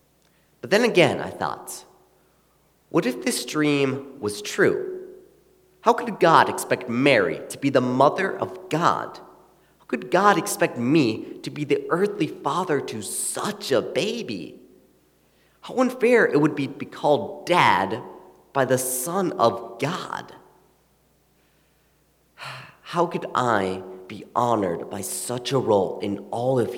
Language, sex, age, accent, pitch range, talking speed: English, male, 30-49, American, 105-140 Hz, 140 wpm